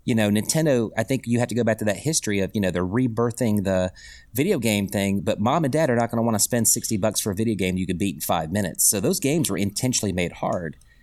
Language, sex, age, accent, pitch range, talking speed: English, male, 30-49, American, 100-125 Hz, 285 wpm